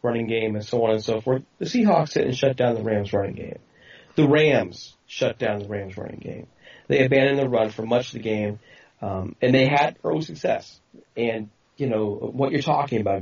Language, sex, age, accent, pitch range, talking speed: English, male, 30-49, American, 105-135 Hz, 220 wpm